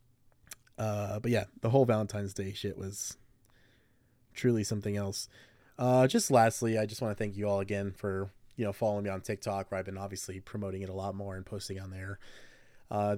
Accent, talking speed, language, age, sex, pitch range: American, 200 wpm, English, 20-39, male, 100-120 Hz